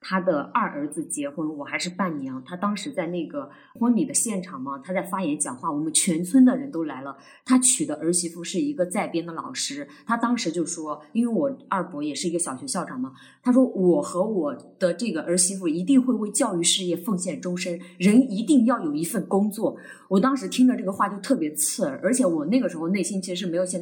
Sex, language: female, Chinese